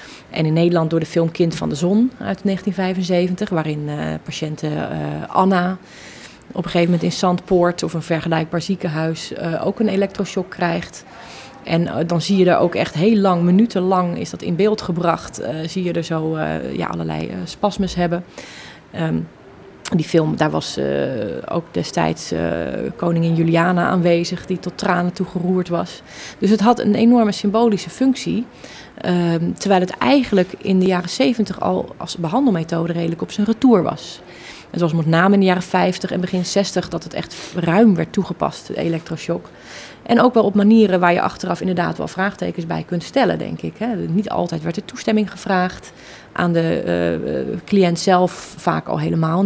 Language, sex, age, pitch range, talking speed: Dutch, female, 30-49, 165-200 Hz, 180 wpm